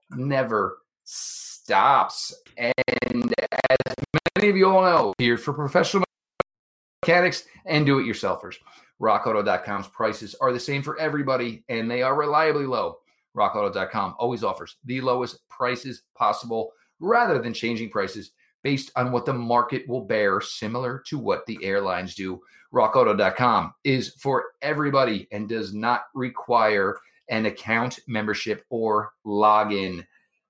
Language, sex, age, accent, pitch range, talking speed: English, male, 30-49, American, 115-155 Hz, 125 wpm